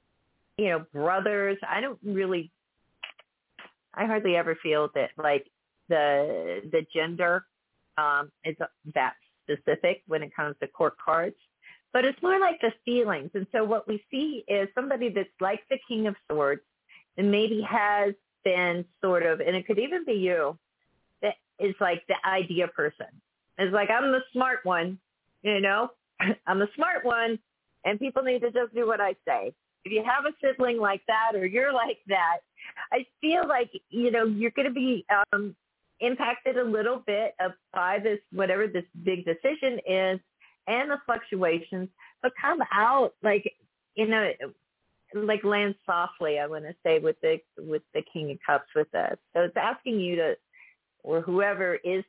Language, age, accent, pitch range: English, 40-59, American, 180-245 Hz